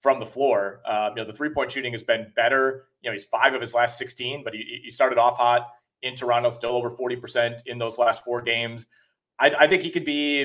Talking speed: 245 wpm